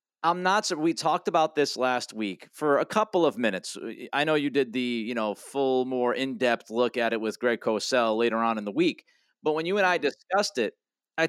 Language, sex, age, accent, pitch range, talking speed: English, male, 30-49, American, 140-175 Hz, 235 wpm